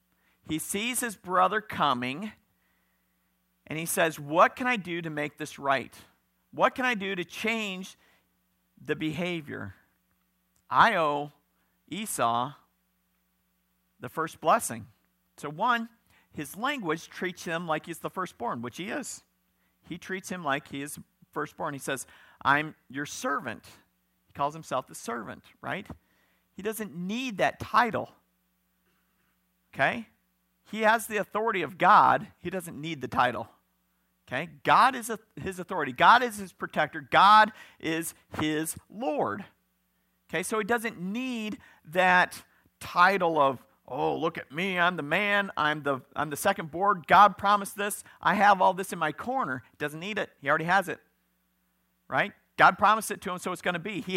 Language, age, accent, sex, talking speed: English, 50-69, American, male, 155 wpm